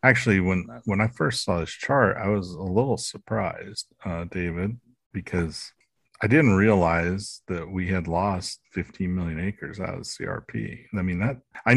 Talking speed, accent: 170 wpm, American